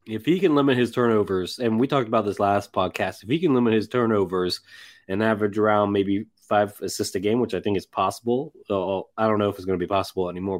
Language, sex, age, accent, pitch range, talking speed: English, male, 20-39, American, 100-125 Hz, 245 wpm